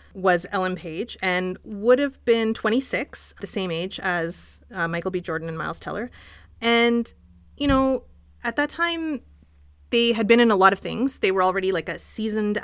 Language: English